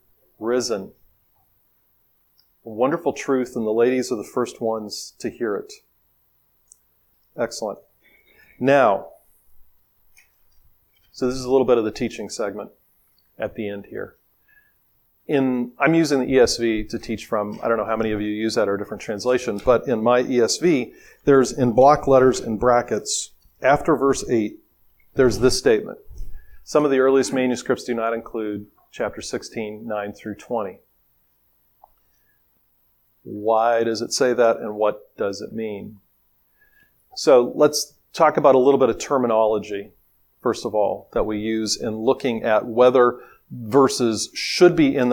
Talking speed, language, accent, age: 150 wpm, English, American, 40-59